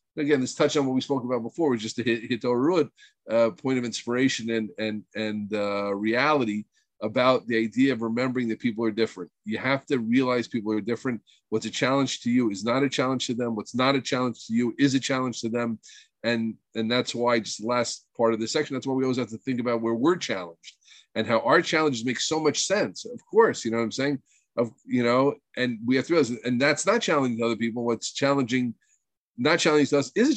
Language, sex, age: English, male, 40-59